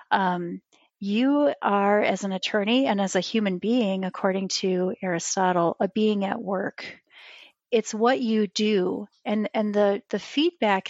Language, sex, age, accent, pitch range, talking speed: English, female, 30-49, American, 190-225 Hz, 150 wpm